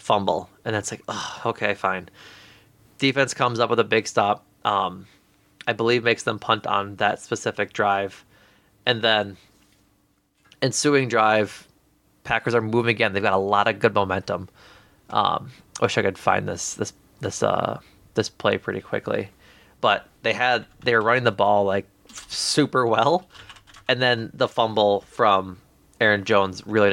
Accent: American